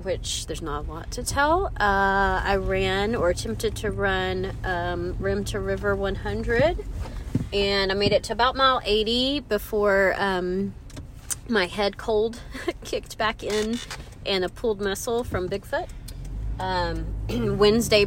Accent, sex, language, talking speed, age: American, female, English, 145 wpm, 30-49